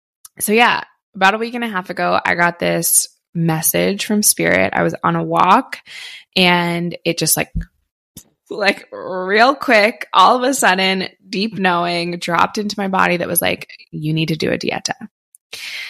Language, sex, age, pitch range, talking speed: English, female, 20-39, 175-240 Hz, 175 wpm